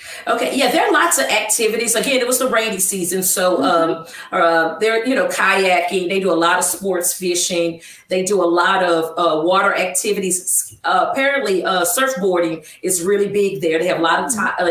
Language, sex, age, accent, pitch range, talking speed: English, female, 40-59, American, 175-240 Hz, 200 wpm